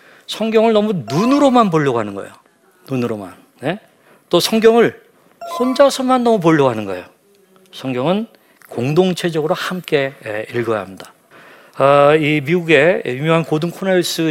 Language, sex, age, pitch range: Korean, male, 40-59, 125-180 Hz